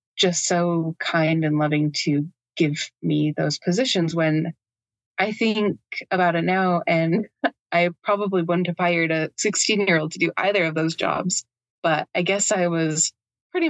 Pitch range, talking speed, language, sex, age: 150-195 Hz, 165 wpm, English, female, 20-39